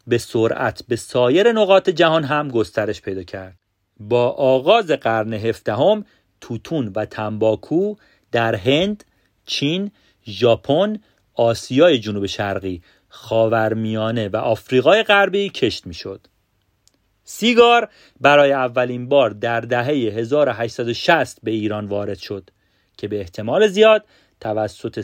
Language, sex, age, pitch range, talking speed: Persian, male, 40-59, 110-155 Hz, 115 wpm